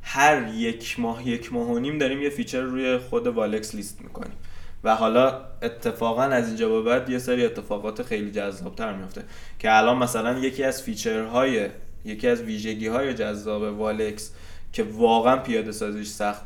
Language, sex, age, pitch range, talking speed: Persian, male, 20-39, 110-135 Hz, 165 wpm